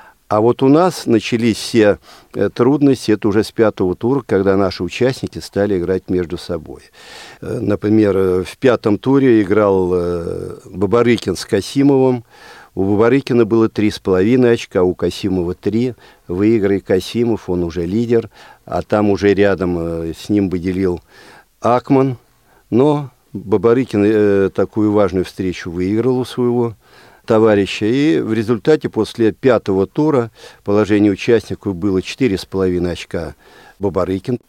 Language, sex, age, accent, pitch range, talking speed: Russian, male, 50-69, native, 95-120 Hz, 125 wpm